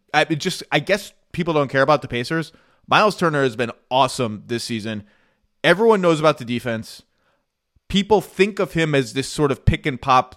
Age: 20-39